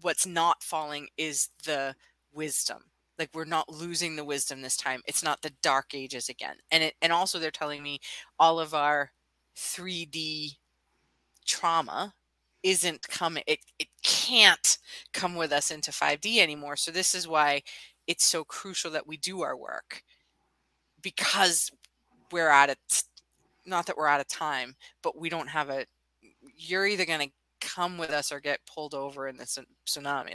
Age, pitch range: 20-39, 140-170 Hz